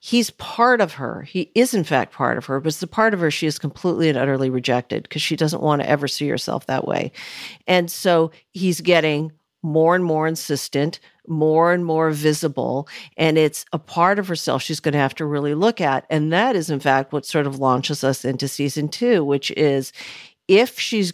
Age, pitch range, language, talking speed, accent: 50-69, 145-180 Hz, English, 215 wpm, American